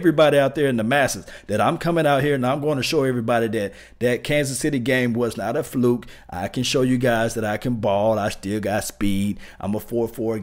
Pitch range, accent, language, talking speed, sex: 110-145 Hz, American, English, 245 wpm, male